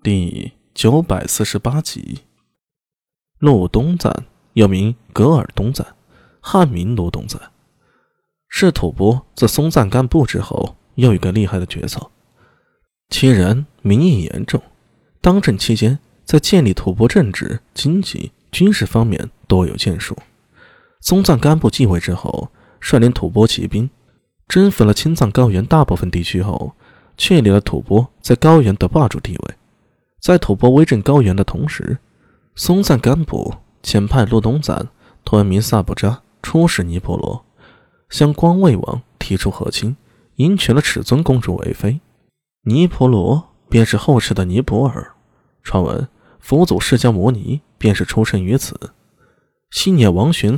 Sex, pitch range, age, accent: male, 100-145 Hz, 20-39, native